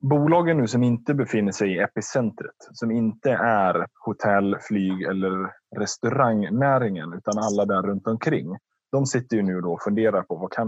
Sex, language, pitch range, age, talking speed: male, Swedish, 100-125 Hz, 20-39, 170 wpm